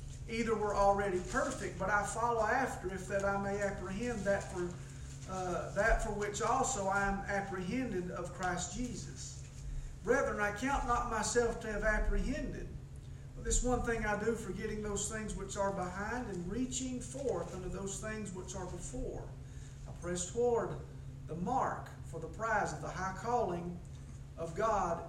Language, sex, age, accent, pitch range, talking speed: English, male, 40-59, American, 200-240 Hz, 165 wpm